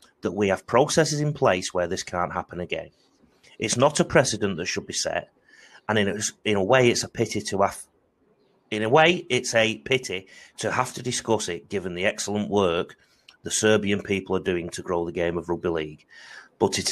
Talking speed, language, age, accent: 210 wpm, English, 30-49, British